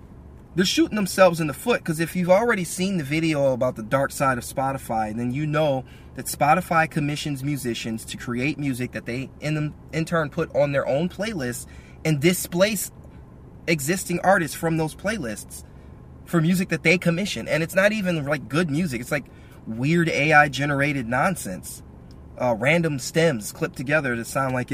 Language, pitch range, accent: English, 125-165 Hz, American